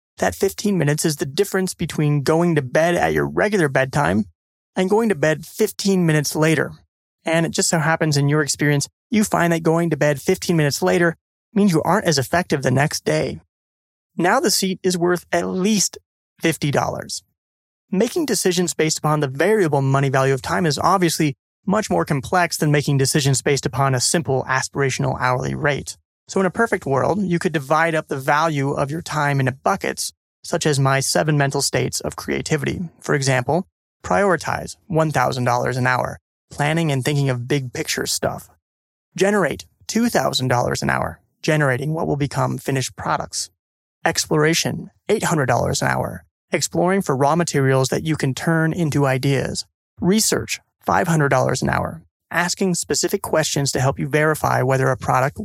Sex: male